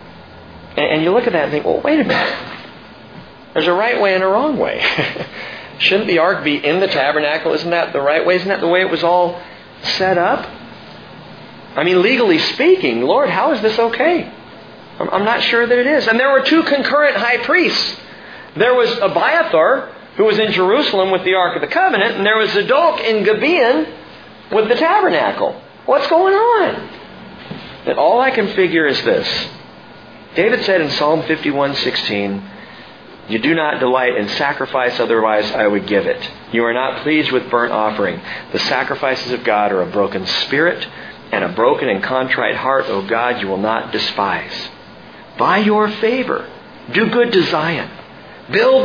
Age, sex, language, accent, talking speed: 40-59, male, English, American, 180 wpm